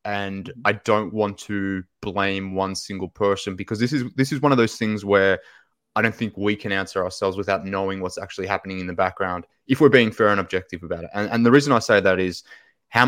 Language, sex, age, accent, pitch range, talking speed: English, male, 20-39, Australian, 95-115 Hz, 235 wpm